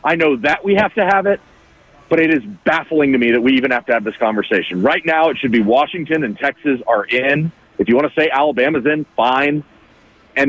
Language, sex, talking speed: English, male, 235 wpm